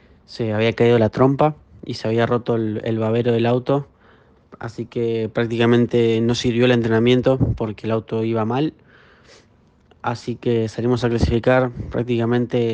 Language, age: Spanish, 20-39